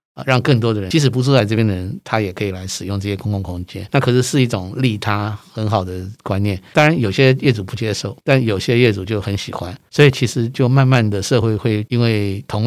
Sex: male